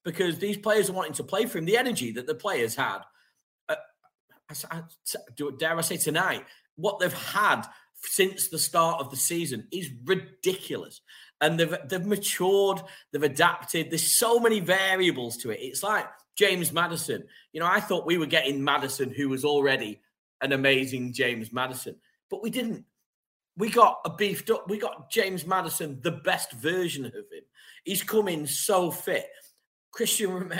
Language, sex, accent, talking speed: English, male, British, 165 wpm